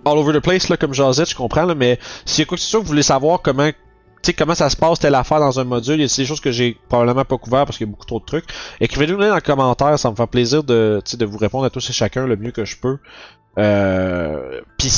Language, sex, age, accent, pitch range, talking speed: French, male, 30-49, Canadian, 115-150 Hz, 260 wpm